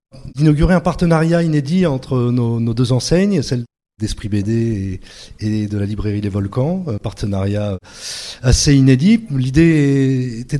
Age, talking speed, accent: 30-49, 130 wpm, French